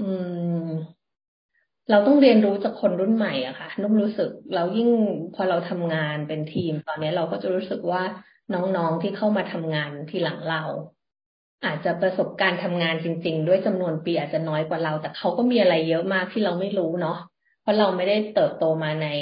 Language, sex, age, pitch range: Thai, female, 20-39, 160-205 Hz